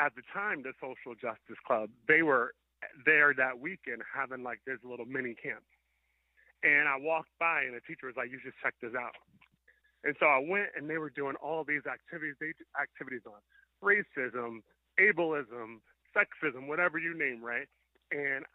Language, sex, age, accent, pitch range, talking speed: English, male, 30-49, American, 125-150 Hz, 170 wpm